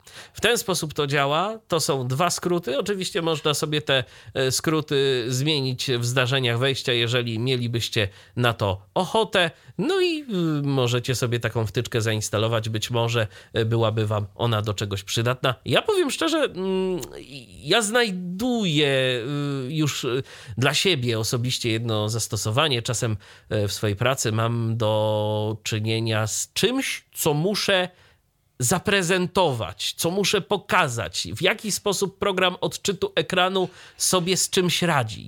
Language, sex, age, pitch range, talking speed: Polish, male, 30-49, 115-160 Hz, 125 wpm